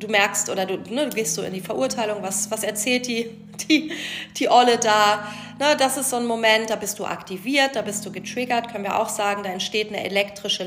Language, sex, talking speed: German, female, 215 wpm